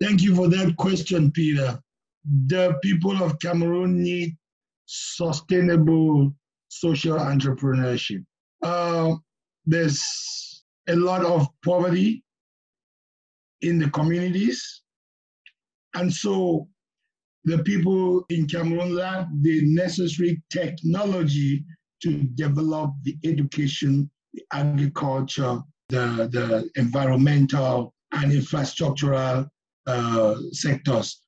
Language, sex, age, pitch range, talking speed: English, male, 60-79, 140-170 Hz, 90 wpm